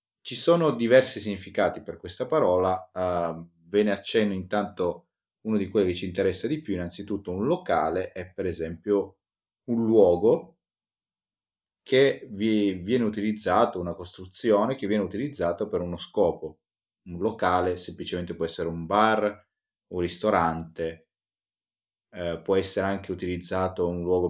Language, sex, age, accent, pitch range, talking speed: Italian, male, 30-49, native, 85-105 Hz, 140 wpm